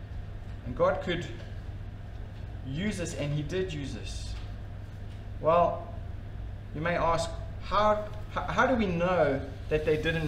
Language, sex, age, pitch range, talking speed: English, male, 30-49, 100-145 Hz, 125 wpm